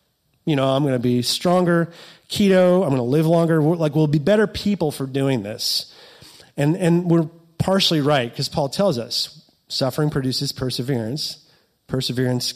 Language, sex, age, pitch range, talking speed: English, male, 30-49, 125-160 Hz, 160 wpm